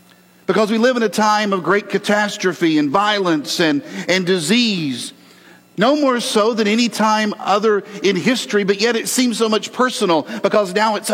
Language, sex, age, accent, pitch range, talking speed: English, male, 50-69, American, 145-215 Hz, 180 wpm